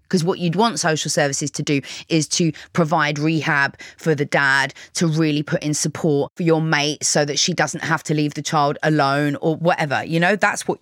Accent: British